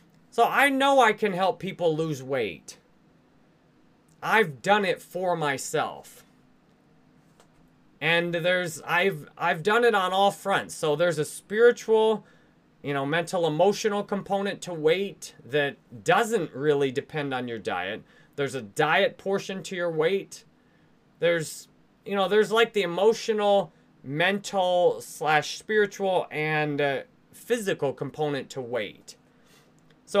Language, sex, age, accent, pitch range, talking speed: English, male, 30-49, American, 155-210 Hz, 130 wpm